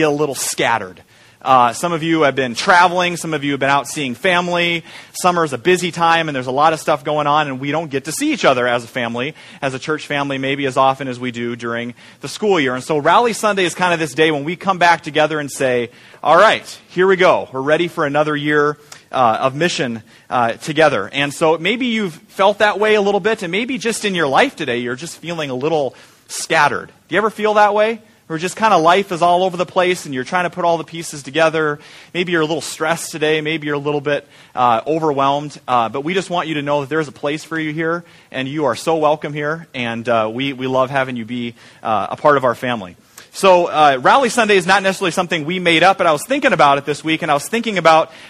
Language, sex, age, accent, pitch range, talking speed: English, male, 30-49, American, 140-180 Hz, 255 wpm